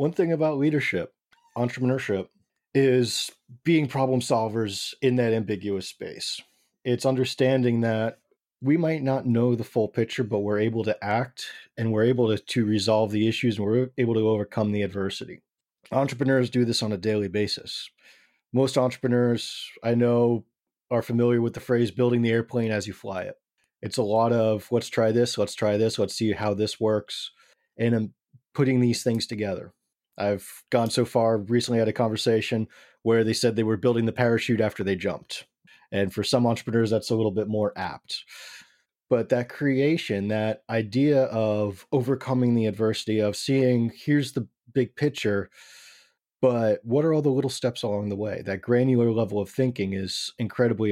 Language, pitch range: English, 110-125 Hz